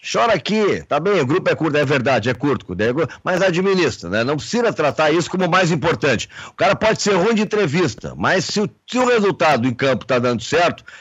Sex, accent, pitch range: male, Brazilian, 145-190 Hz